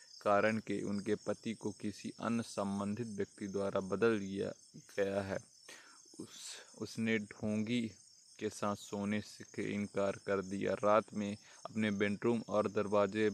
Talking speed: 135 wpm